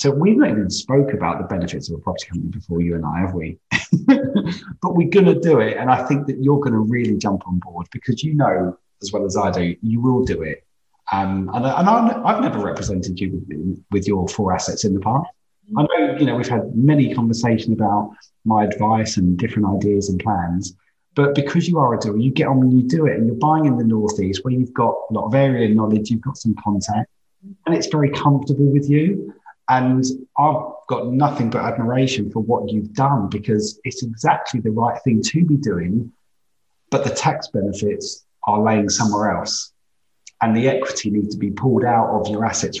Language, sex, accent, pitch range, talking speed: English, male, British, 105-140 Hz, 215 wpm